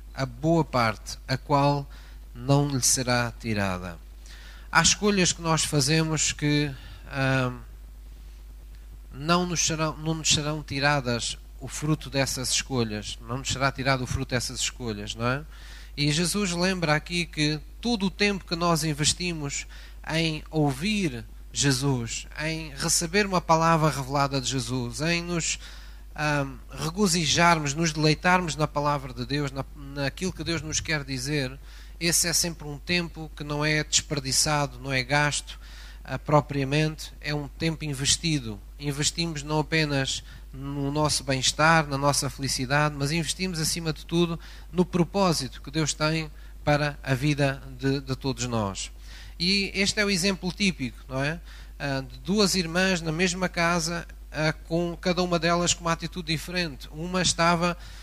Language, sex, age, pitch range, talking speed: Portuguese, male, 20-39, 135-165 Hz, 150 wpm